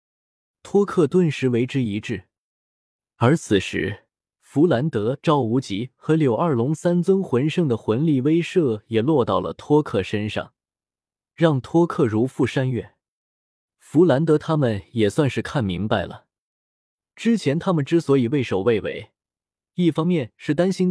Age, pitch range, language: 20-39, 110-165 Hz, Chinese